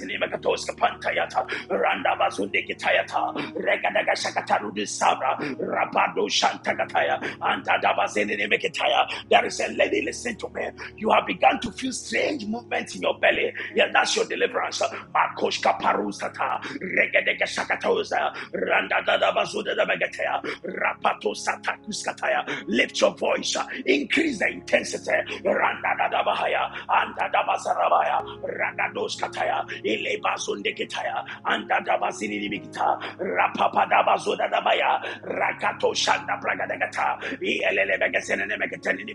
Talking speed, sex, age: 125 wpm, male, 50-69